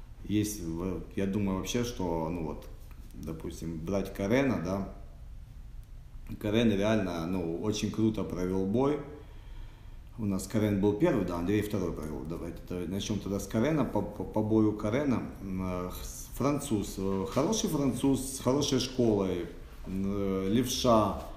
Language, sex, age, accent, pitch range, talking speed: Russian, male, 40-59, native, 90-110 Hz, 125 wpm